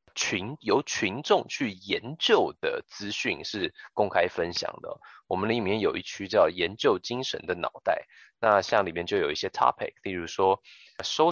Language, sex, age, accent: Chinese, male, 20-39, native